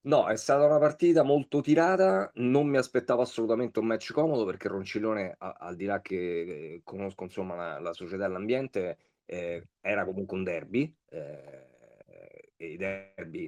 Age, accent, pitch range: 30-49, native, 90-115 Hz